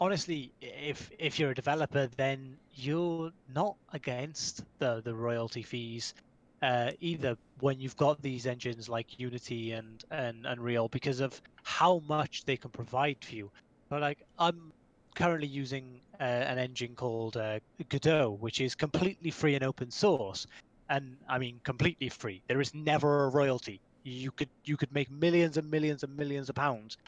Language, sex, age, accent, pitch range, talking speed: English, male, 20-39, British, 125-150 Hz, 165 wpm